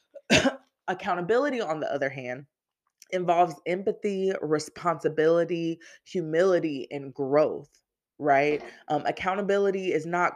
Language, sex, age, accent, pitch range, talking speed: English, female, 20-39, American, 140-175 Hz, 95 wpm